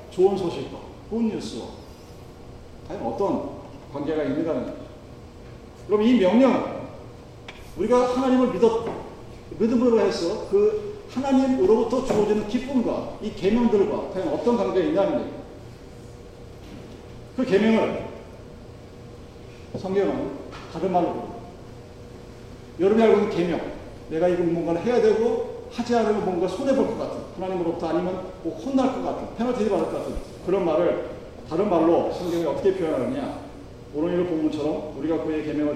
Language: Korean